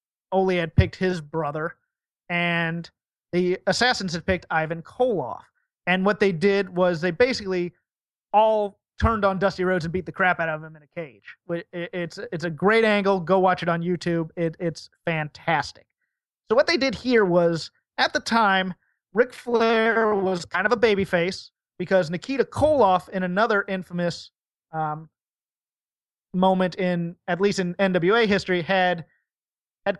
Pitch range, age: 175-215 Hz, 30-49